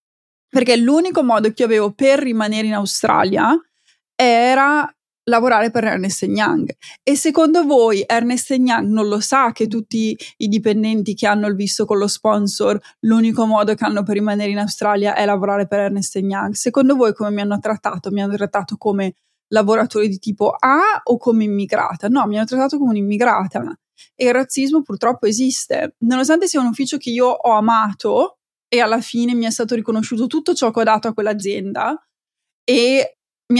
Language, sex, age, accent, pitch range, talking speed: Italian, female, 20-39, native, 215-255 Hz, 175 wpm